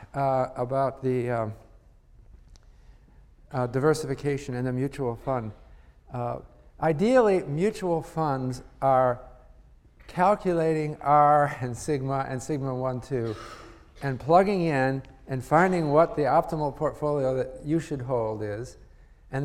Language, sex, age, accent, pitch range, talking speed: English, male, 50-69, American, 120-150 Hz, 110 wpm